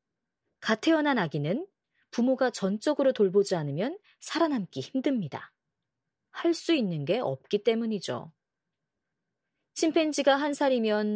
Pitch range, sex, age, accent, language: 170-280 Hz, female, 30-49, native, Korean